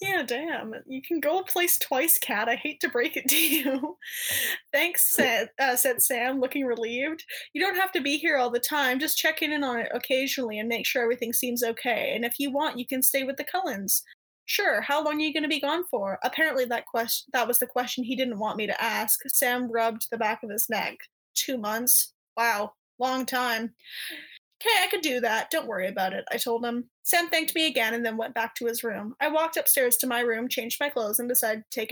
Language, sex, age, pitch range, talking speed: English, female, 10-29, 235-290 Hz, 235 wpm